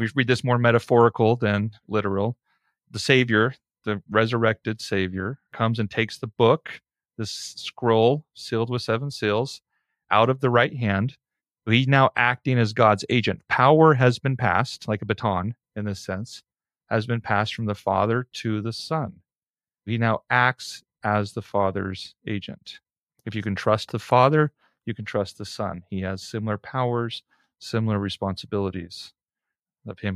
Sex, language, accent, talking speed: male, English, American, 155 wpm